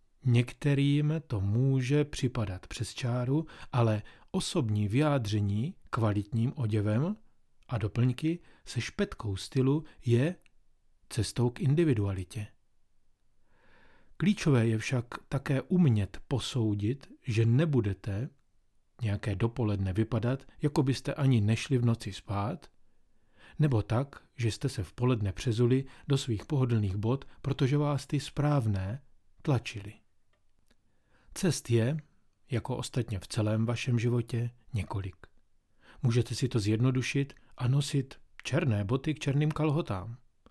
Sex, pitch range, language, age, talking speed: male, 110-140 Hz, Czech, 40-59, 110 wpm